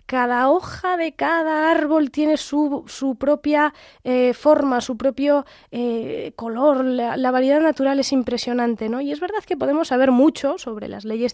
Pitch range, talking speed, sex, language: 220-270 Hz, 165 wpm, female, Spanish